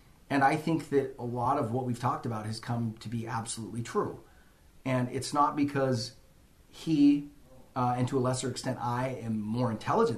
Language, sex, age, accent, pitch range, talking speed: English, male, 30-49, American, 120-145 Hz, 190 wpm